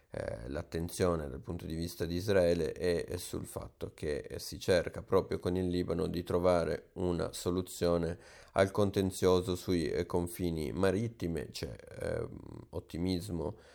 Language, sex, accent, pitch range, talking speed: Italian, male, native, 80-90 Hz, 120 wpm